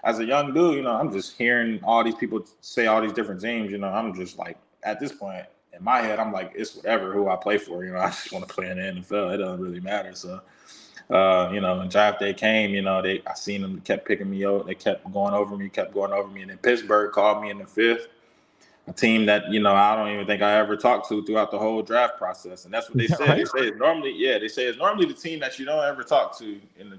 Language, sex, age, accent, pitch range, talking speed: English, male, 20-39, American, 100-125 Hz, 280 wpm